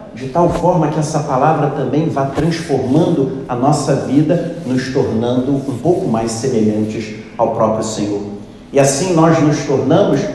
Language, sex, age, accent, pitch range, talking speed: Portuguese, male, 40-59, Brazilian, 120-165 Hz, 150 wpm